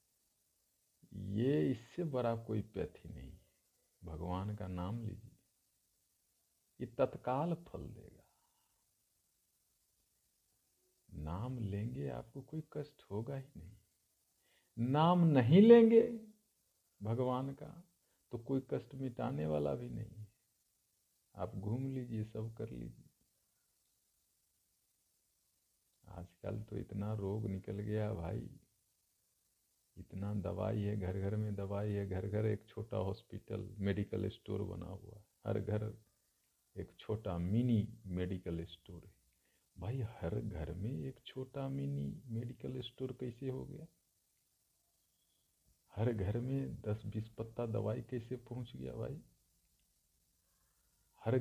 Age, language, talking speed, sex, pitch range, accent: 50-69, Hindi, 115 wpm, male, 95-125 Hz, native